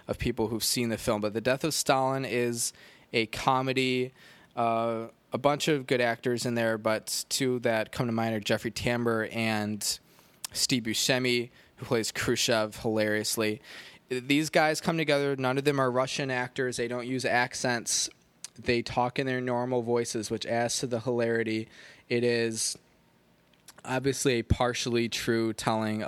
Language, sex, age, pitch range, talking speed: English, male, 20-39, 110-125 Hz, 160 wpm